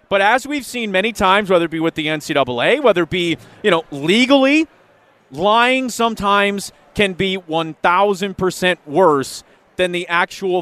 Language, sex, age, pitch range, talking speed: English, male, 30-49, 165-215 Hz, 160 wpm